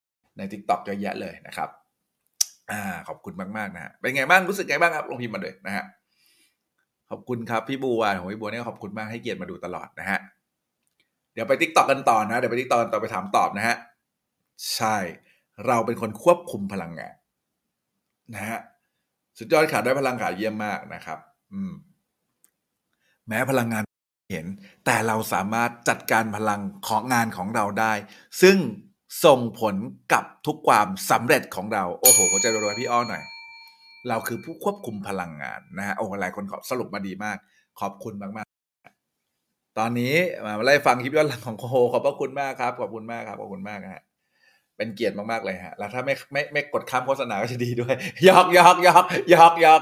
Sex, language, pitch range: male, Thai, 110-165 Hz